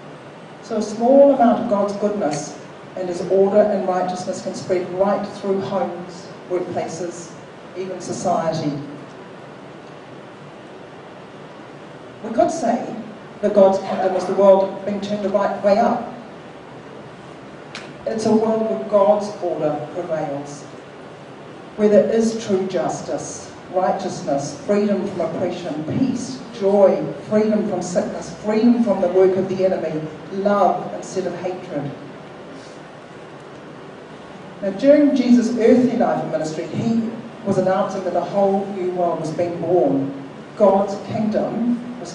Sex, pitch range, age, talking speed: female, 180-215 Hz, 40-59, 125 wpm